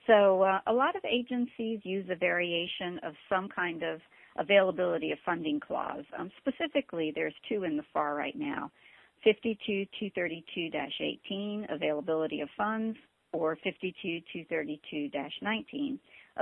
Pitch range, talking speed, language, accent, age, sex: 170-230 Hz, 115 wpm, English, American, 50-69, female